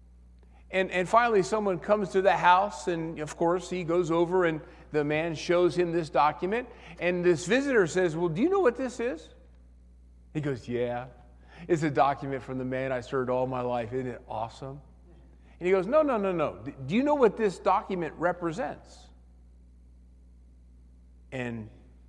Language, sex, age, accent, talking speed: English, male, 40-59, American, 175 wpm